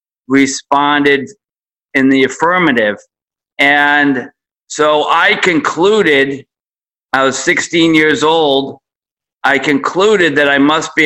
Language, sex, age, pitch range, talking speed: English, male, 50-69, 125-145 Hz, 105 wpm